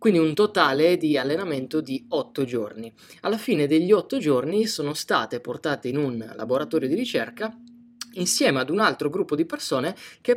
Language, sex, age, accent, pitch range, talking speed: Italian, male, 20-39, native, 125-165 Hz, 170 wpm